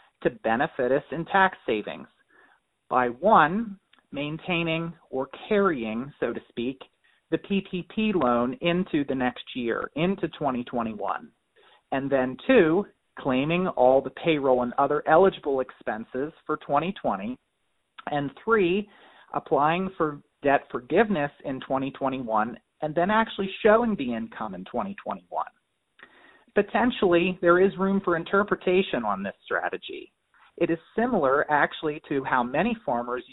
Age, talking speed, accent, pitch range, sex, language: 40-59, 125 wpm, American, 135-190 Hz, male, English